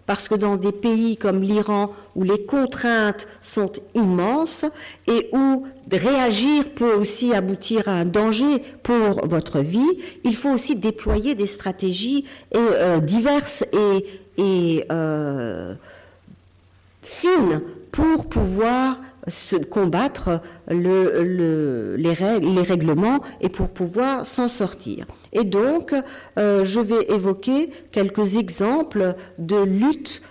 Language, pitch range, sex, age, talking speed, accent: French, 185-240 Hz, female, 50-69, 110 wpm, French